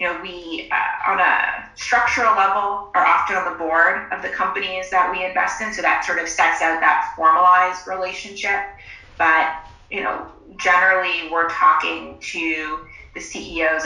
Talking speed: 165 wpm